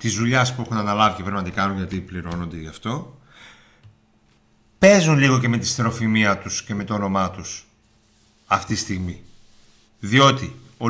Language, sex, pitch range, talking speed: Greek, male, 95-115 Hz, 170 wpm